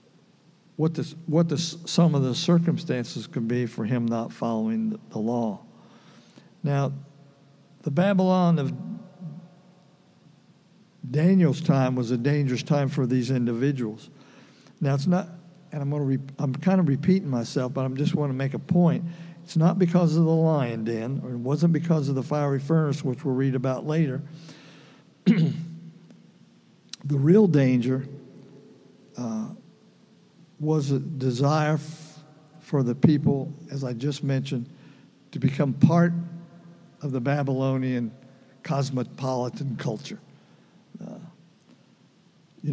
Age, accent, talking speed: 60-79, American, 135 wpm